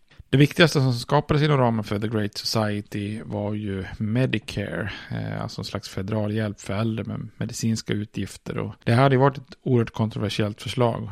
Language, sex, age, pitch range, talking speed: Swedish, male, 30-49, 100-115 Hz, 180 wpm